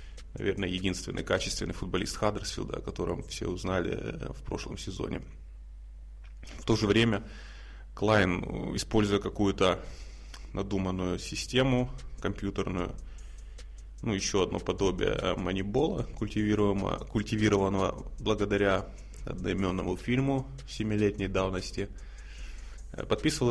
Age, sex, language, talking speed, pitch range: 20-39, male, Russian, 85 wpm, 90-110 Hz